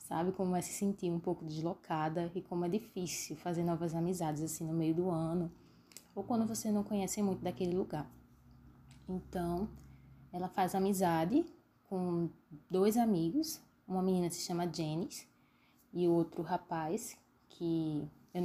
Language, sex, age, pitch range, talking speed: Portuguese, female, 20-39, 170-205 Hz, 150 wpm